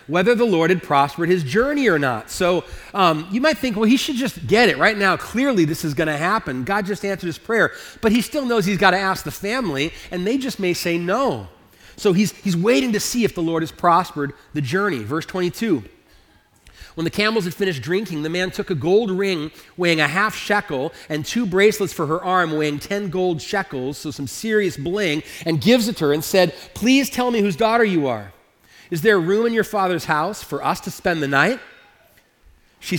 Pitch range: 150-210 Hz